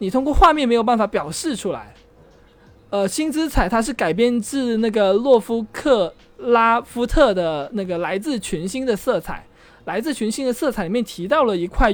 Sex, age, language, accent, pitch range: male, 20-39, Chinese, native, 195-275 Hz